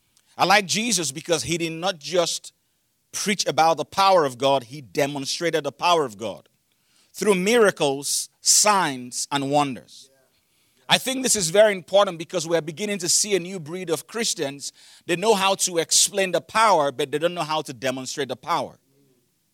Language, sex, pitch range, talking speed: English, male, 165-215 Hz, 175 wpm